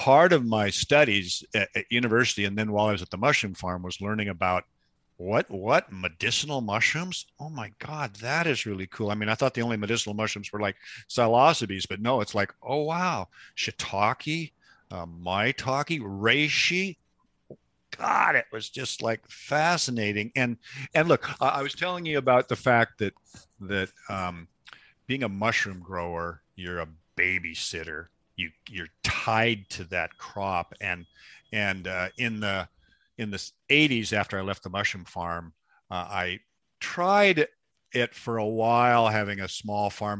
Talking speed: 165 wpm